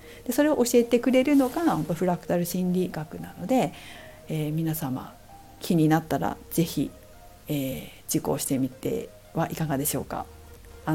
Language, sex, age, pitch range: Japanese, female, 50-69, 150-220 Hz